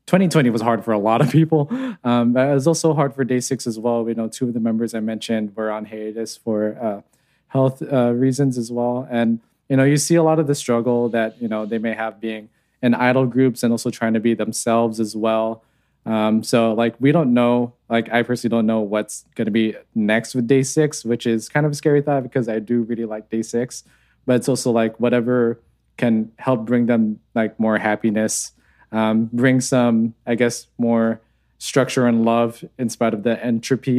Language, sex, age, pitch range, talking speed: English, male, 20-39, 110-135 Hz, 215 wpm